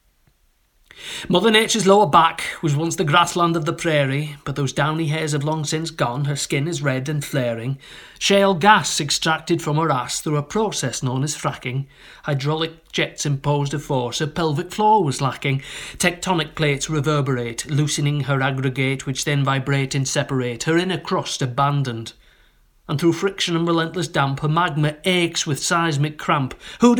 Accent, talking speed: British, 165 wpm